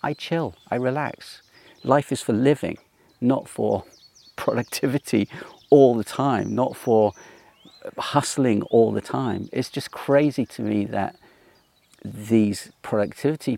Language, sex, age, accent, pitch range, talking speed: English, male, 40-59, British, 110-135 Hz, 125 wpm